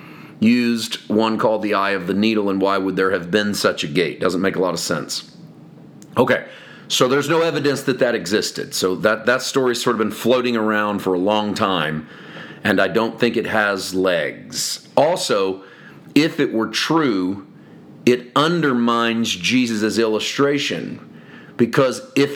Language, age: English, 40-59